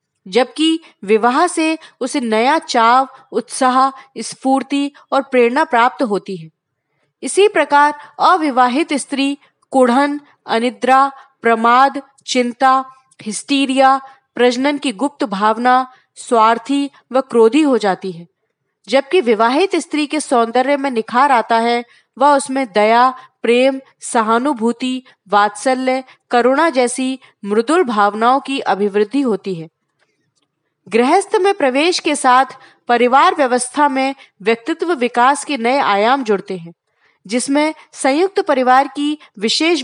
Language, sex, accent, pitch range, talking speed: Hindi, female, native, 220-280 Hz, 110 wpm